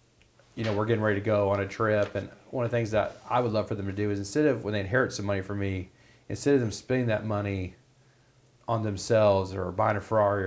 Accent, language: American, English